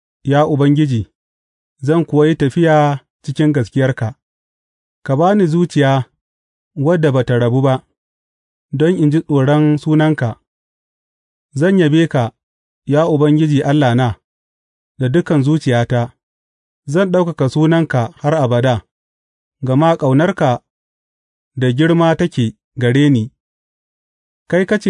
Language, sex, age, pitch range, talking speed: English, male, 30-49, 115-160 Hz, 90 wpm